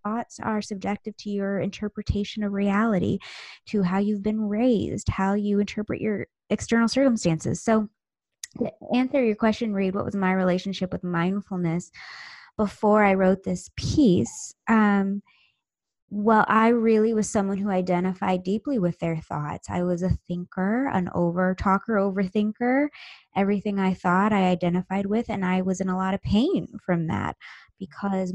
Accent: American